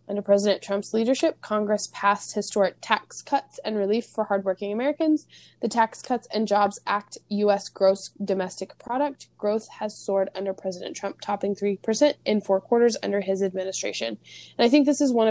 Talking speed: 175 wpm